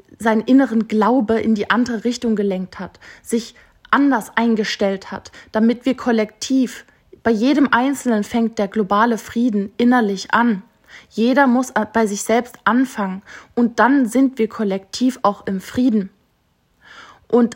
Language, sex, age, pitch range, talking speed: German, female, 20-39, 210-245 Hz, 135 wpm